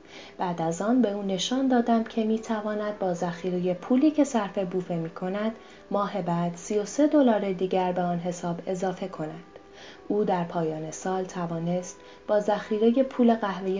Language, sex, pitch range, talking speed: Persian, female, 180-230 Hz, 155 wpm